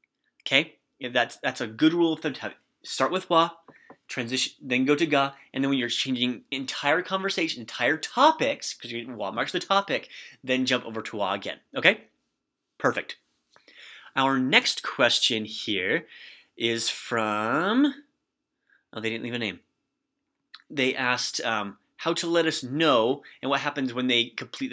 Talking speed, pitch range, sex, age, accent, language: 165 wpm, 110-155 Hz, male, 30-49, American, English